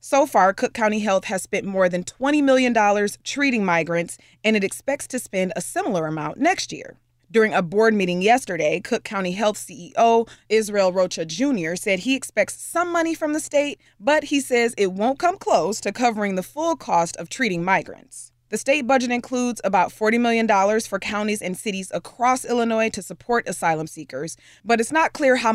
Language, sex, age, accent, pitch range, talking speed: English, female, 20-39, American, 185-260 Hz, 190 wpm